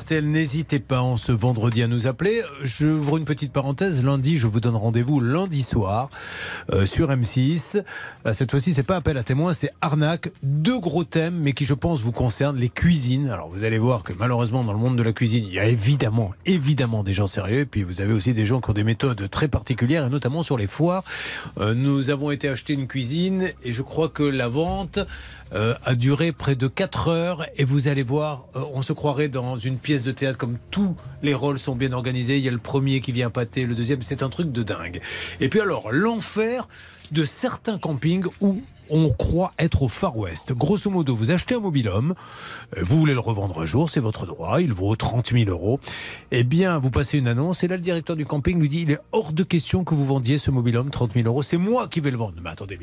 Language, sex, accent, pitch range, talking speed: French, male, French, 120-165 Hz, 235 wpm